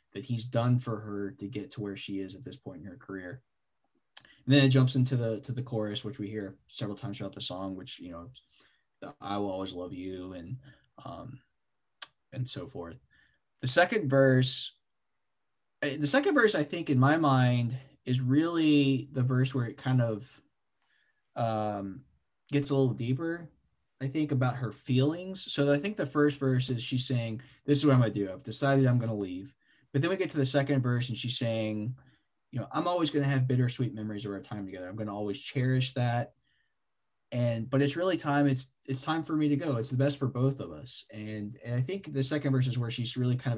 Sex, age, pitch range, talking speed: male, 20-39, 110-140 Hz, 220 wpm